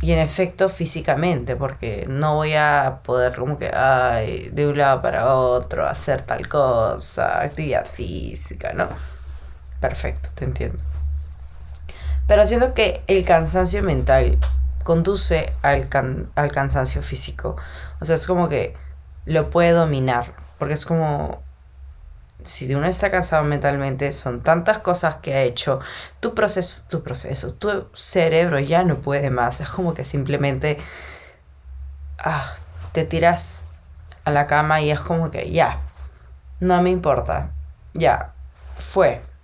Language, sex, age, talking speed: Spanish, female, 20-39, 135 wpm